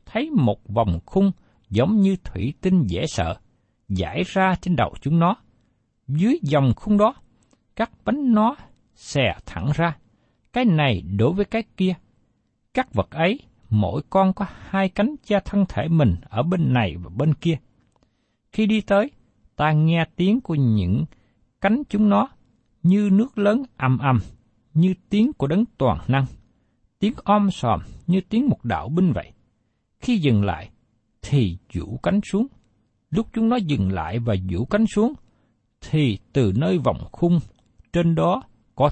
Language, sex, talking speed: Vietnamese, male, 160 wpm